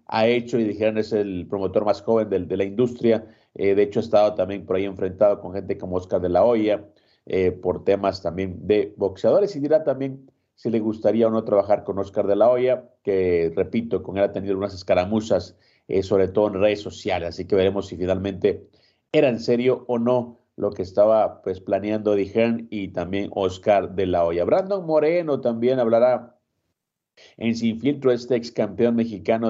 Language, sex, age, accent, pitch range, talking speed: Spanish, male, 40-59, Mexican, 100-120 Hz, 195 wpm